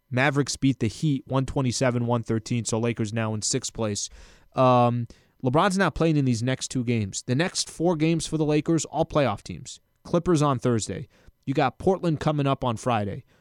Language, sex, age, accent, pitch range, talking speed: English, male, 20-39, American, 125-160 Hz, 180 wpm